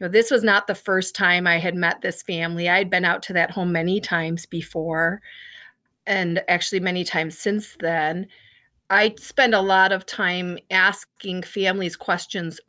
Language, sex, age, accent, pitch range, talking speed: English, female, 40-59, American, 175-205 Hz, 170 wpm